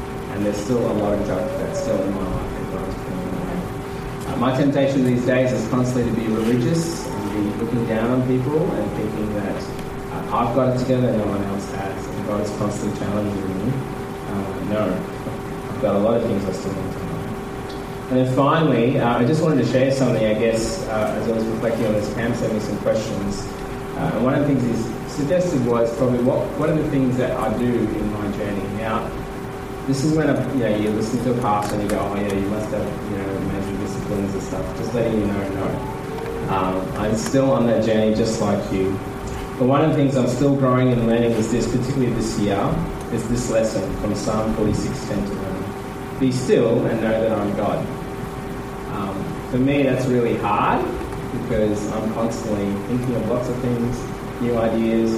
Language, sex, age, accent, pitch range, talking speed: English, male, 20-39, Australian, 105-130 Hz, 210 wpm